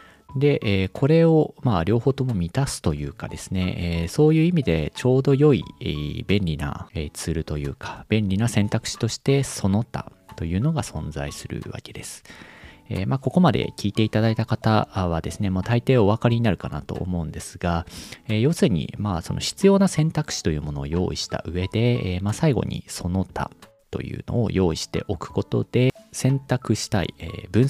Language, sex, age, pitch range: Japanese, male, 40-59, 85-125 Hz